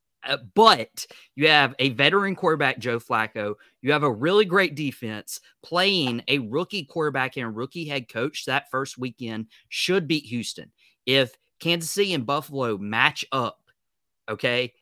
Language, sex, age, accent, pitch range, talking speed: English, male, 30-49, American, 120-155 Hz, 150 wpm